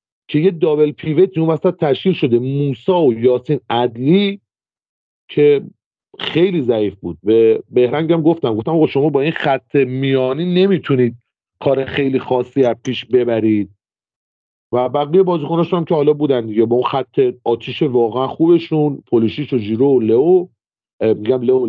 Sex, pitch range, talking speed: male, 130-175 Hz, 135 wpm